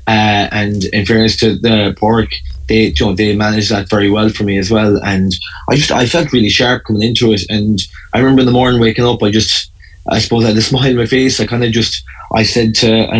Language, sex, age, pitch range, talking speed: English, male, 20-39, 100-110 Hz, 255 wpm